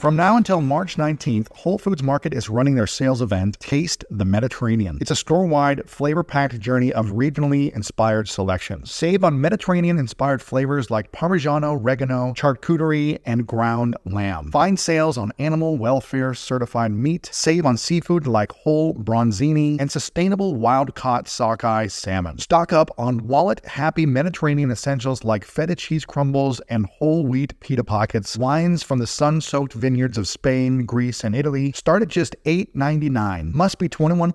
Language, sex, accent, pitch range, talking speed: English, male, American, 120-160 Hz, 150 wpm